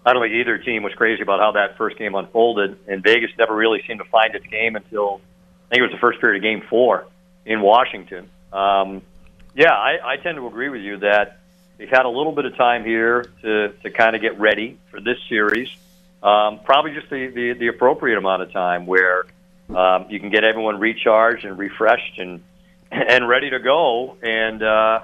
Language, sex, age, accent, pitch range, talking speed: English, male, 50-69, American, 105-135 Hz, 210 wpm